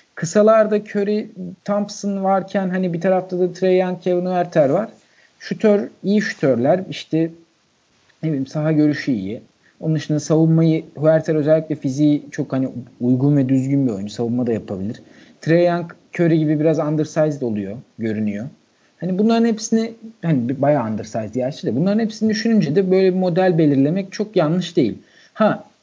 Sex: male